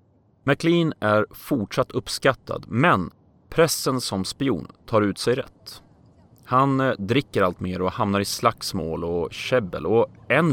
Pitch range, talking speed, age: 95-130 Hz, 135 wpm, 30-49